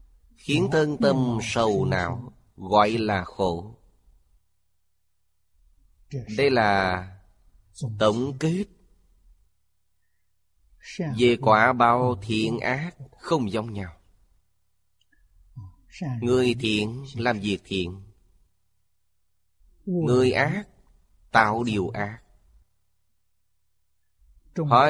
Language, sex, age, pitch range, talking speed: Vietnamese, male, 30-49, 95-125 Hz, 75 wpm